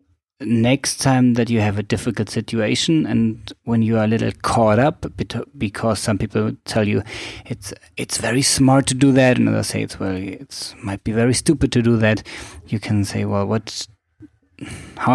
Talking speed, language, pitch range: 190 wpm, English, 100-120 Hz